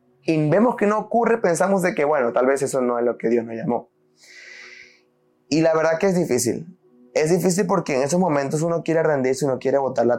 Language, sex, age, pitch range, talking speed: Spanish, male, 20-39, 125-160 Hz, 225 wpm